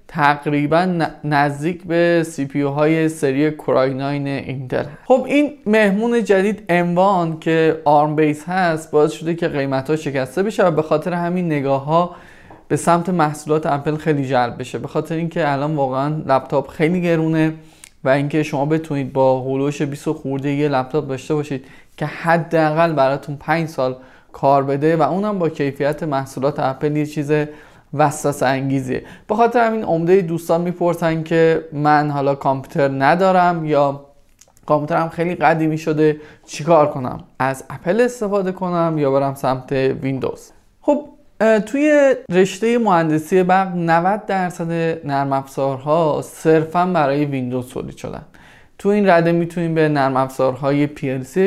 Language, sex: Persian, male